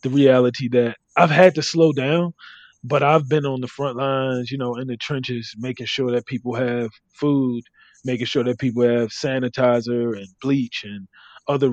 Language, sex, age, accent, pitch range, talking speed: English, male, 20-39, American, 120-140 Hz, 185 wpm